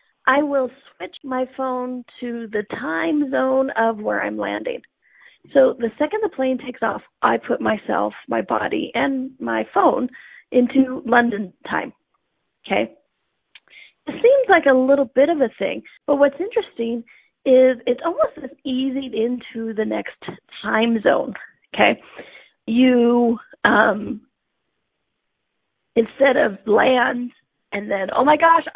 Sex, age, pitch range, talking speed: female, 40-59, 235-295 Hz, 135 wpm